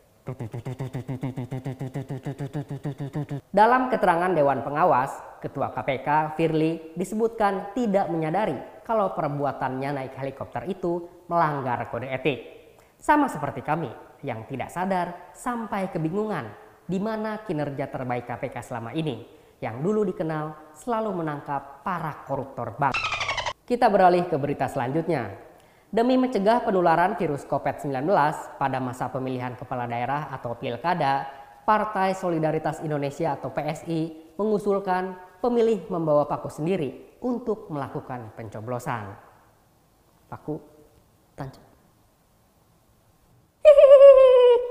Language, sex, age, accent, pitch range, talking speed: Indonesian, female, 20-39, native, 135-190 Hz, 100 wpm